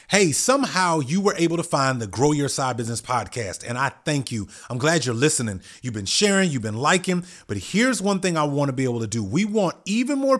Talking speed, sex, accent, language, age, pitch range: 235 wpm, male, American, English, 30-49, 120-185 Hz